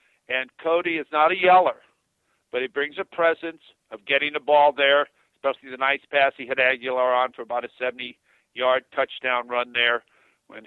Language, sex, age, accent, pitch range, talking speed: English, male, 50-69, American, 125-150 Hz, 180 wpm